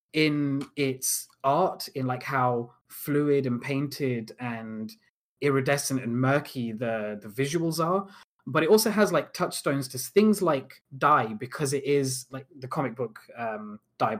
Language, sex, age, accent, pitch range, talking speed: English, male, 20-39, British, 120-145 Hz, 150 wpm